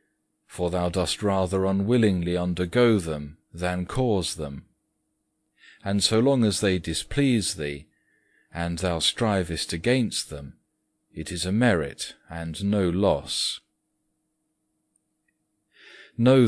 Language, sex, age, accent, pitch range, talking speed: English, male, 40-59, British, 85-105 Hz, 110 wpm